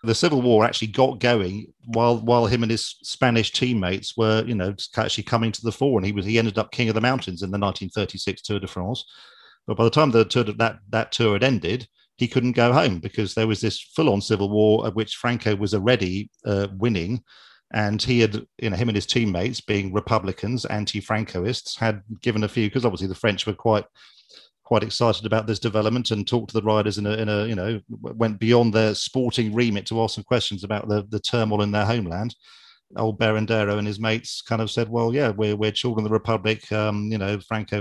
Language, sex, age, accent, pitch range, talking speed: English, male, 40-59, British, 105-115 Hz, 225 wpm